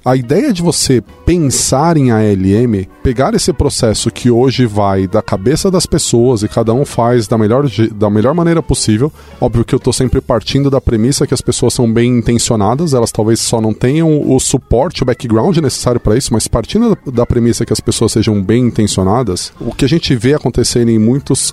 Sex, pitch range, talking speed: male, 115-145 Hz, 200 wpm